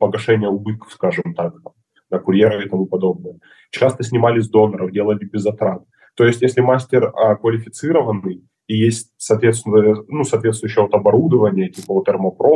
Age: 20-39